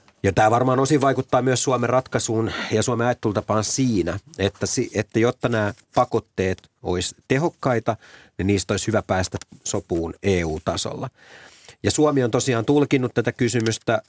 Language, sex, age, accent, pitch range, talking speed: Finnish, male, 30-49, native, 95-115 Hz, 140 wpm